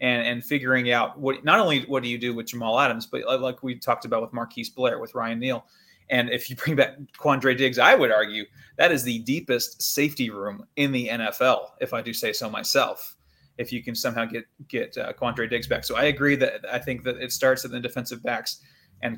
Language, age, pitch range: English, 30-49, 120-135 Hz